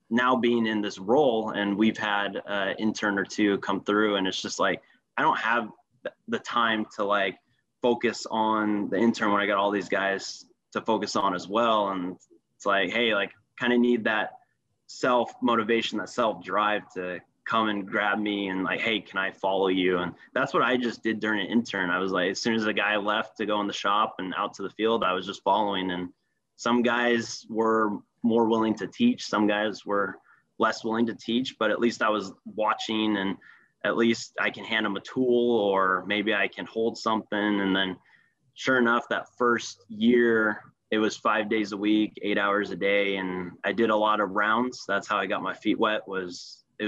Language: English